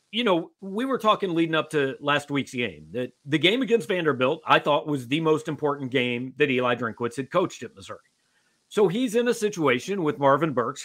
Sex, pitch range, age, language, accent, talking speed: male, 130-180 Hz, 40-59, English, American, 210 wpm